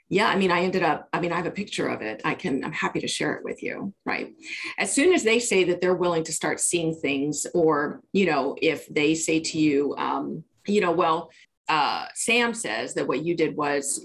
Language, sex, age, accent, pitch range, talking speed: English, female, 40-59, American, 150-185 Hz, 240 wpm